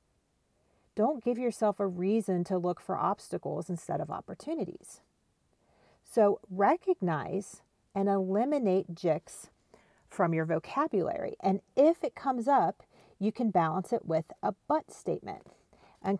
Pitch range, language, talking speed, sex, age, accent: 170-210 Hz, English, 125 wpm, female, 40-59, American